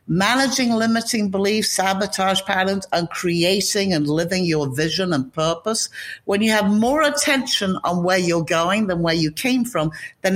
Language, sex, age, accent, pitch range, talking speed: English, female, 60-79, British, 160-215 Hz, 160 wpm